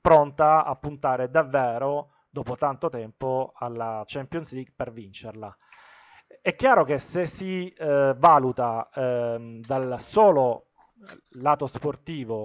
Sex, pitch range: male, 120-150 Hz